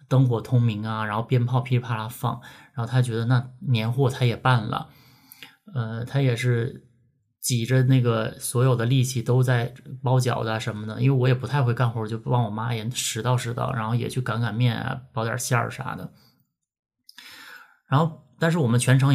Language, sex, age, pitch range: Chinese, male, 20-39, 120-135 Hz